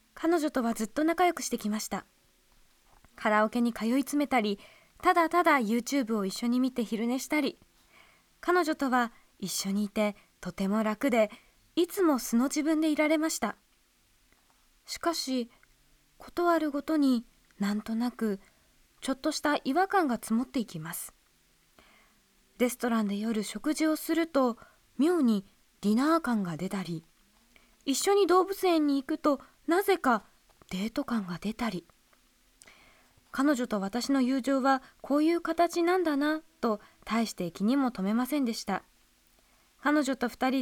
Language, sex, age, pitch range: Japanese, female, 20-39, 220-310 Hz